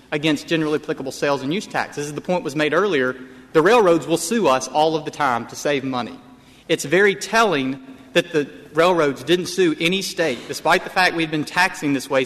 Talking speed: 215 wpm